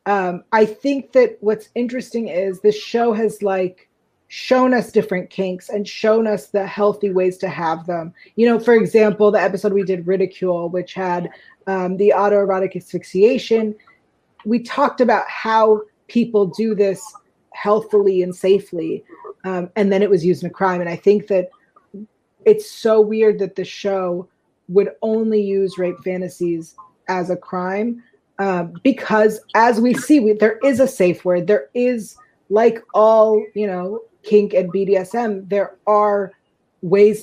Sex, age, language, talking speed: female, 30-49, English, 160 wpm